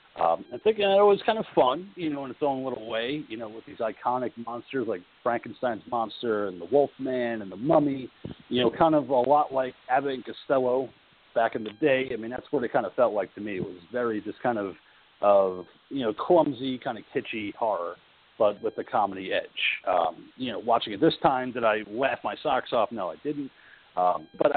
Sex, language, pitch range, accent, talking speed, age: male, English, 110-150 Hz, American, 225 wpm, 40-59